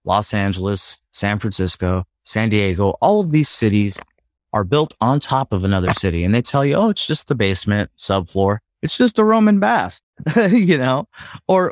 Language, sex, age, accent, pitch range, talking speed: English, male, 30-49, American, 100-145 Hz, 180 wpm